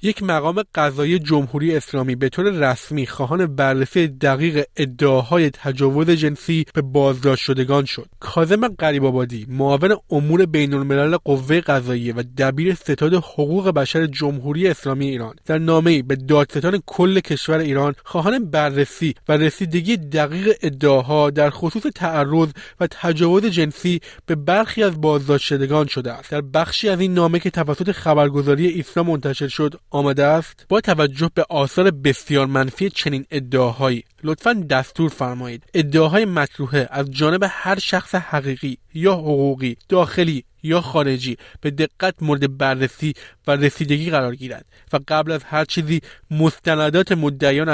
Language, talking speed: Persian, 140 wpm